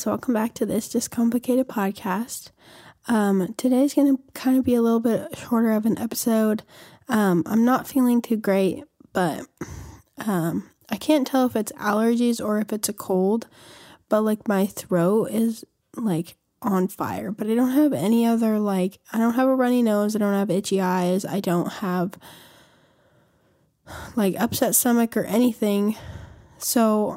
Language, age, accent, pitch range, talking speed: English, 10-29, American, 200-240 Hz, 165 wpm